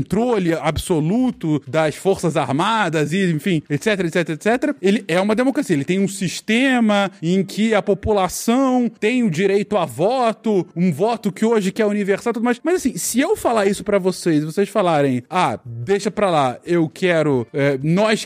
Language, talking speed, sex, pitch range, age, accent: Portuguese, 175 wpm, male, 160-245 Hz, 20-39, Brazilian